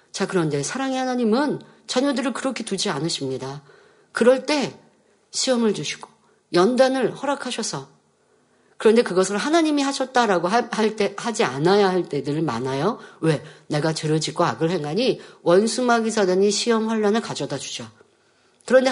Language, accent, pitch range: Korean, native, 175-255 Hz